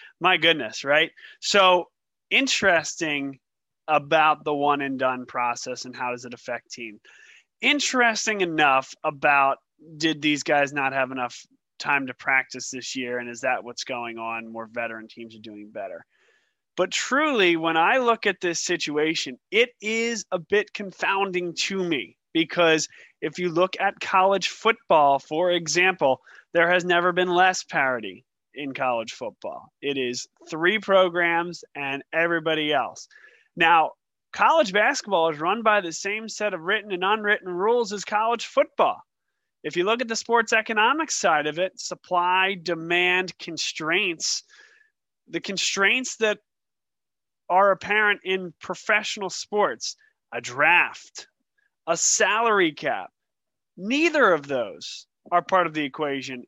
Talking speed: 140 wpm